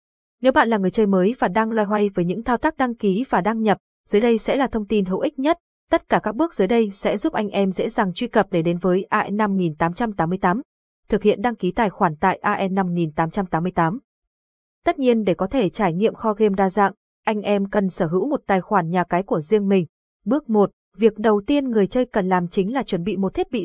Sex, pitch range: female, 185-230 Hz